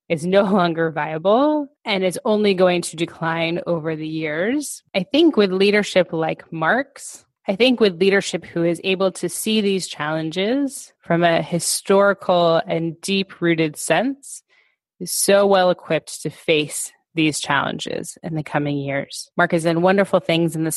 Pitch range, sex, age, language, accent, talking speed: 160-195 Hz, female, 20-39, English, American, 155 wpm